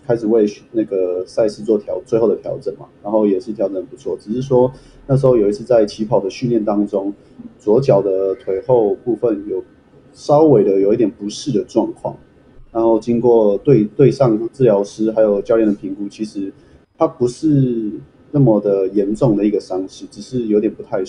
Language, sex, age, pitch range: Chinese, male, 30-49, 105-140 Hz